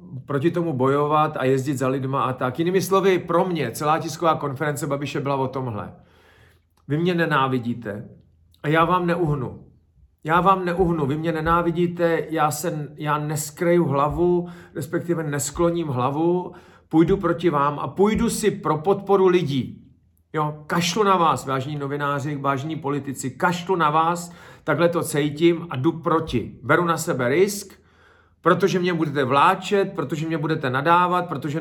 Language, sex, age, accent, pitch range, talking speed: Czech, male, 40-59, native, 130-170 Hz, 150 wpm